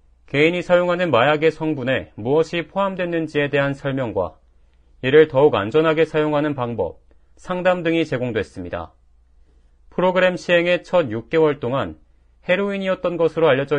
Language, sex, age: Korean, male, 40-59